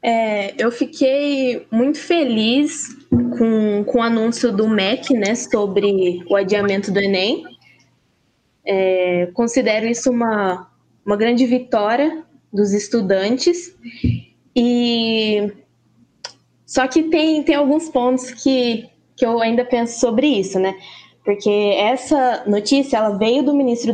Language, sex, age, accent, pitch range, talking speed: Portuguese, female, 10-29, Brazilian, 210-270 Hz, 115 wpm